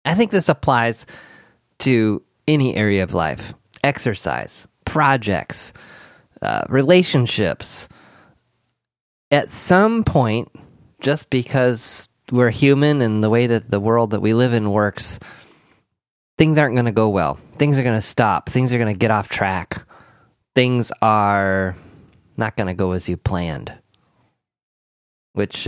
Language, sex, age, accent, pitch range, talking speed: English, male, 30-49, American, 95-125 Hz, 140 wpm